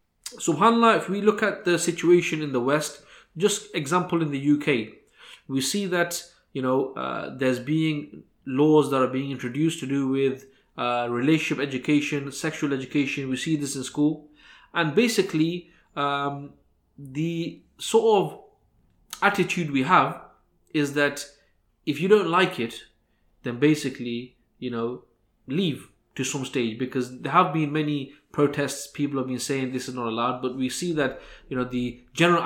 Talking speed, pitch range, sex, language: 160 wpm, 135-165 Hz, male, English